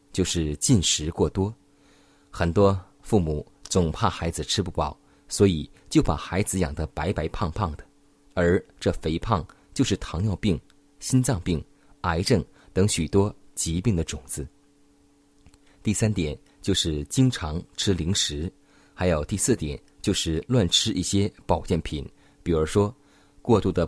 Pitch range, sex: 80-105 Hz, male